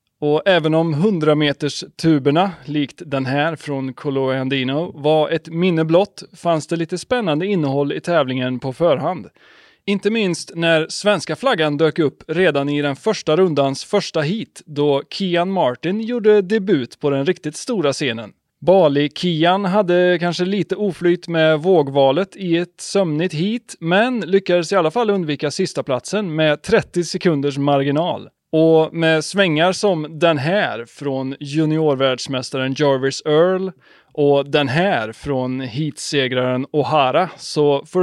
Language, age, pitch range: Swedish, 30-49, 145-190 Hz